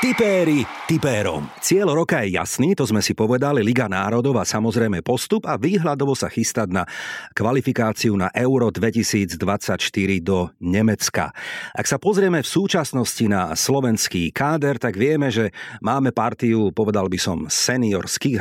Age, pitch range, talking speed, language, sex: 40-59, 105-140 Hz, 135 wpm, Slovak, male